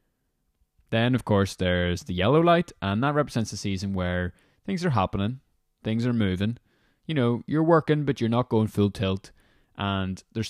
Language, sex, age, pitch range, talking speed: English, male, 20-39, 90-110 Hz, 175 wpm